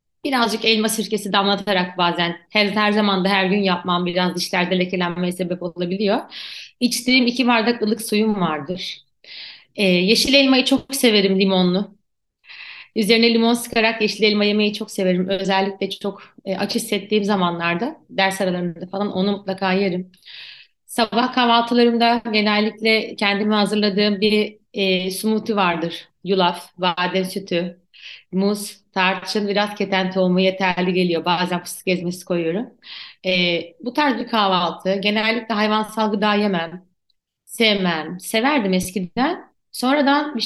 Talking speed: 130 wpm